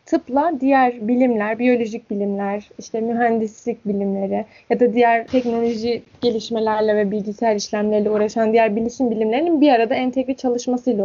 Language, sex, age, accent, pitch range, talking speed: Turkish, female, 10-29, native, 225-270 Hz, 130 wpm